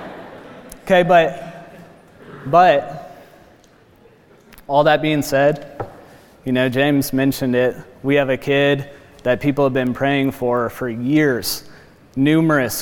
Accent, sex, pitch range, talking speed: American, male, 130-145 Hz, 115 wpm